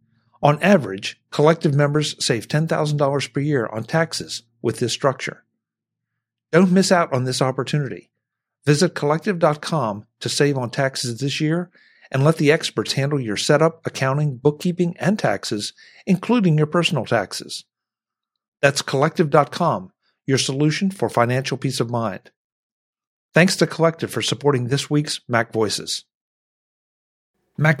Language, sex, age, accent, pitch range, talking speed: English, male, 50-69, American, 130-165 Hz, 130 wpm